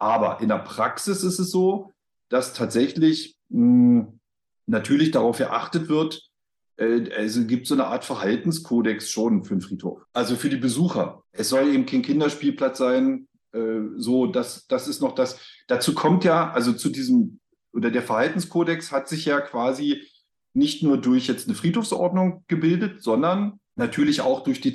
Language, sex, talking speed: German, male, 165 wpm